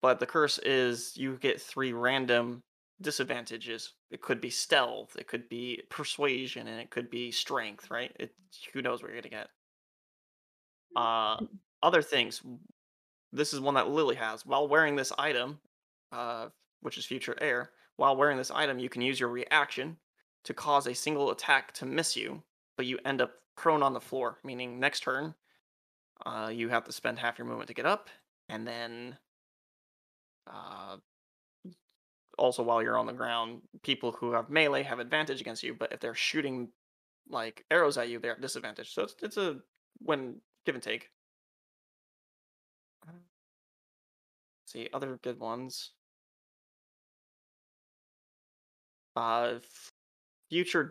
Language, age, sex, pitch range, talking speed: English, 20-39, male, 115-135 Hz, 150 wpm